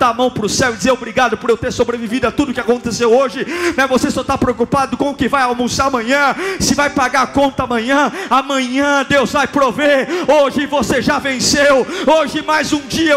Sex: male